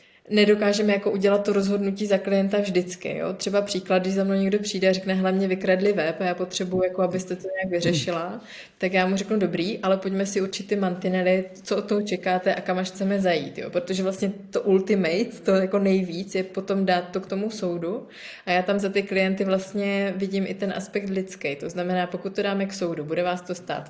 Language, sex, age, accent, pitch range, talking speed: Czech, female, 20-39, native, 175-195 Hz, 215 wpm